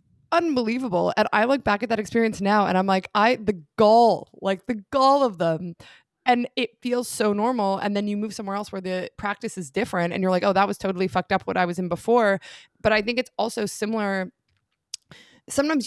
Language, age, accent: English, 20-39, American